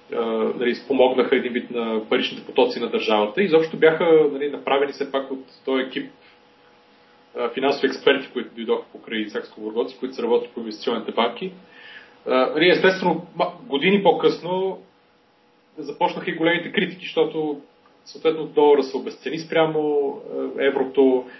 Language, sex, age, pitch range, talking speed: Bulgarian, male, 30-49, 125-160 Hz, 130 wpm